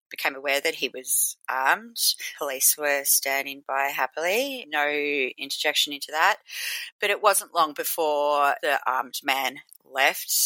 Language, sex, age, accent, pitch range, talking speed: English, female, 30-49, Australian, 145-175 Hz, 140 wpm